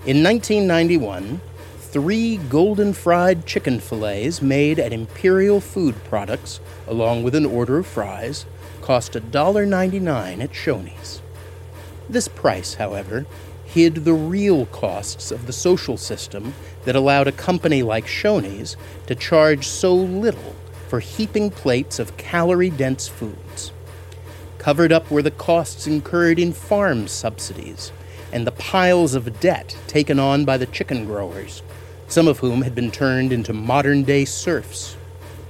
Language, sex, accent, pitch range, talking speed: English, male, American, 95-155 Hz, 130 wpm